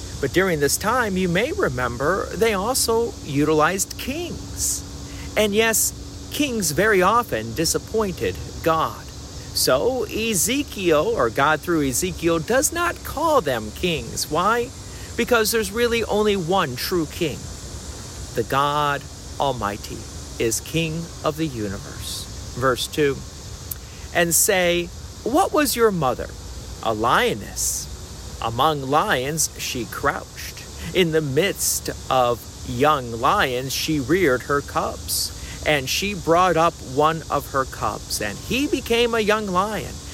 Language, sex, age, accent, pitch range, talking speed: English, male, 50-69, American, 115-190 Hz, 125 wpm